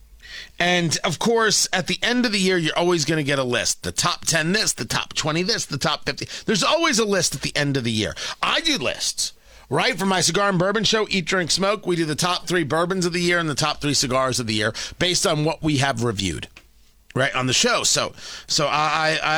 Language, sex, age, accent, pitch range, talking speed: English, male, 40-59, American, 140-195 Hz, 250 wpm